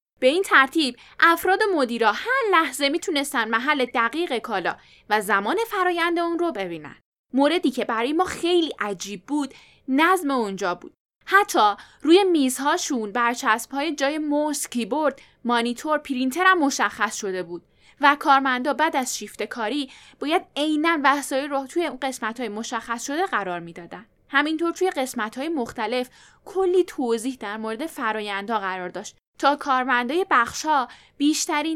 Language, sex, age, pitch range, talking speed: Persian, female, 10-29, 230-330 Hz, 140 wpm